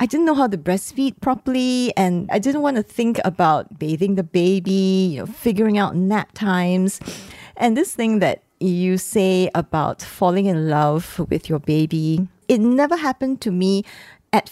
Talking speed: 175 wpm